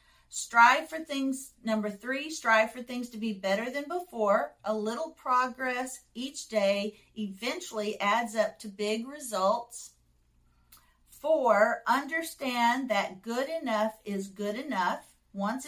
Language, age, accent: English, 50-69, American